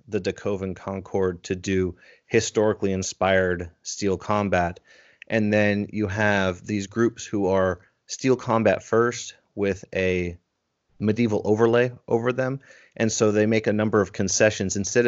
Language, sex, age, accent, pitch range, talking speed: English, male, 30-49, American, 90-105 Hz, 140 wpm